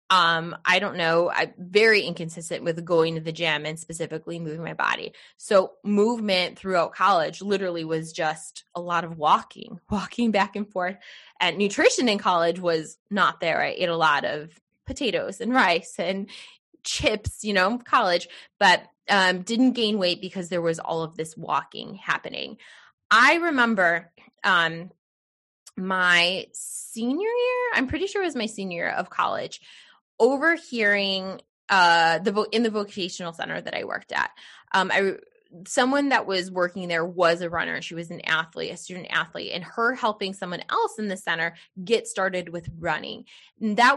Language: English